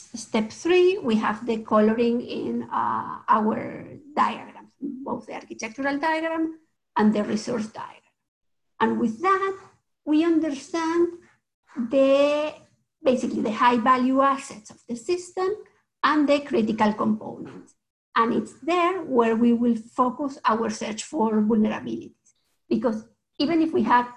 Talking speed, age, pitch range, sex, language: 130 wpm, 50-69, 225-285 Hz, female, English